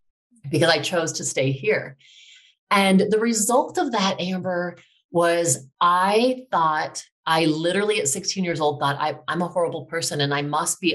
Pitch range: 150-205 Hz